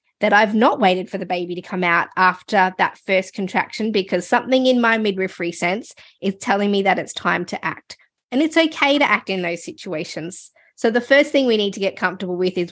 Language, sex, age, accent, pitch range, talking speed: English, female, 20-39, Australian, 190-235 Hz, 220 wpm